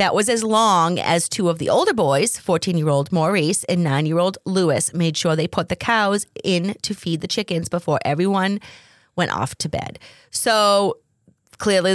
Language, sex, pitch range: English, female, 140-180 Hz